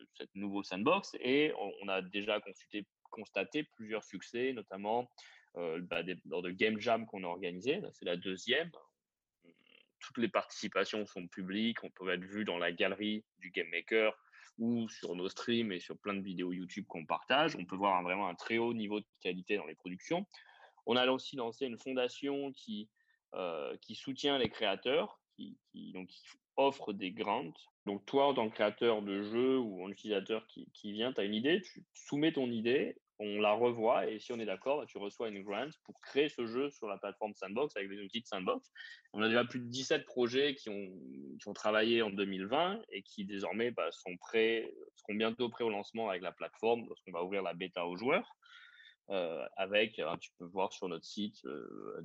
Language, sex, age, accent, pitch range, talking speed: French, male, 20-39, French, 100-135 Hz, 200 wpm